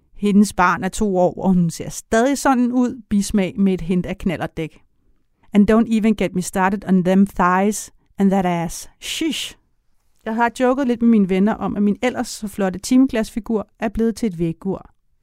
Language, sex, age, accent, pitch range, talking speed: Danish, female, 30-49, native, 185-225 Hz, 195 wpm